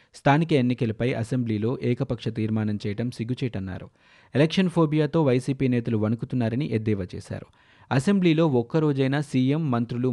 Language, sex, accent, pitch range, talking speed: Telugu, male, native, 115-135 Hz, 105 wpm